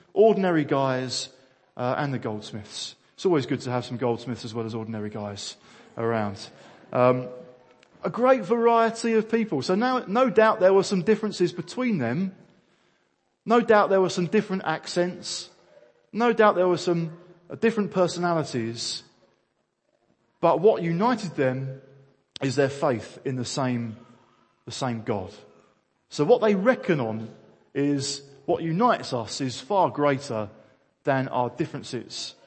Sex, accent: male, British